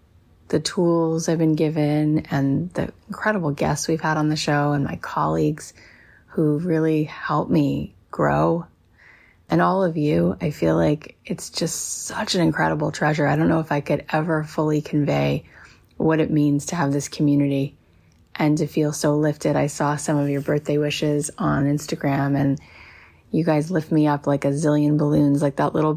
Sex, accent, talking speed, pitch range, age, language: female, American, 180 wpm, 145-160 Hz, 30-49, English